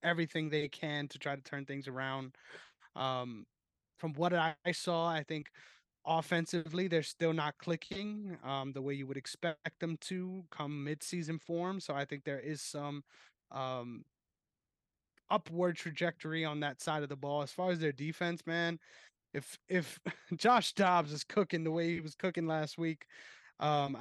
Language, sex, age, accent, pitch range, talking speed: English, male, 20-39, American, 140-170 Hz, 165 wpm